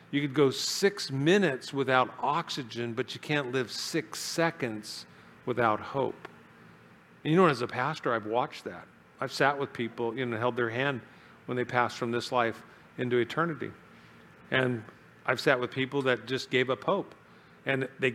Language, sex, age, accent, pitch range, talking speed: English, male, 50-69, American, 125-160 Hz, 175 wpm